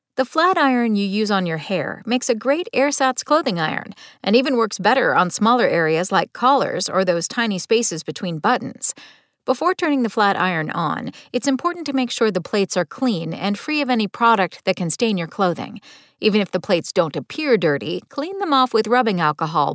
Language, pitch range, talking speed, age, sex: English, 185-265 Hz, 205 wpm, 40-59, female